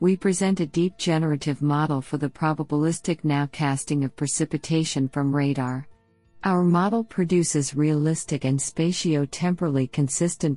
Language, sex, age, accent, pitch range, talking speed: English, female, 50-69, American, 135-160 Hz, 115 wpm